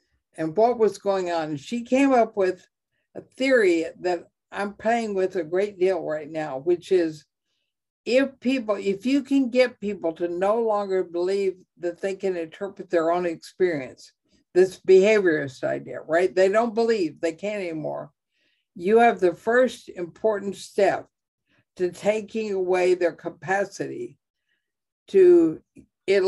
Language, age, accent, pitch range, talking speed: English, 60-79, American, 175-215 Hz, 145 wpm